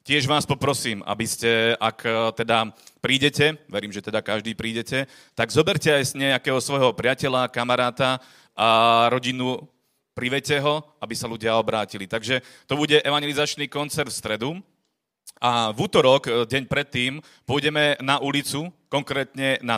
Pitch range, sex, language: 110-135 Hz, male, Slovak